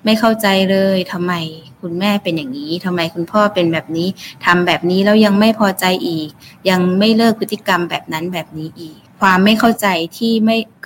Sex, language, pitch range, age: female, Thai, 170-215 Hz, 20-39